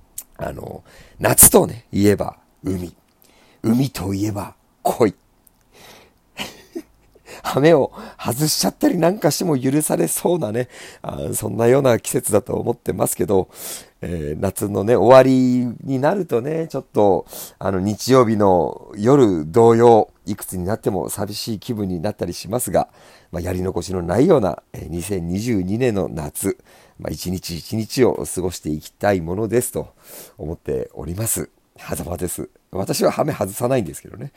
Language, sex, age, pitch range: Japanese, male, 50-69, 90-130 Hz